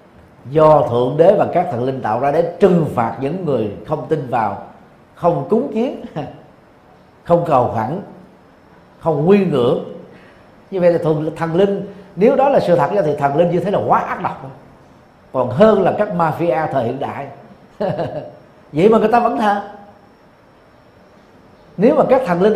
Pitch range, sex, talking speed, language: 145-195 Hz, male, 175 wpm, Vietnamese